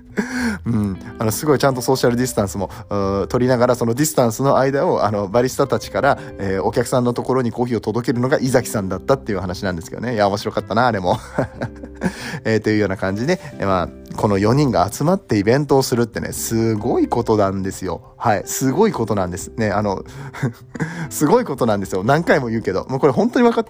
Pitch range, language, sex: 100-145 Hz, Japanese, male